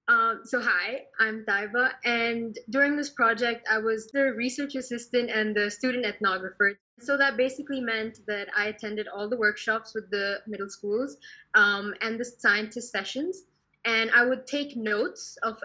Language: English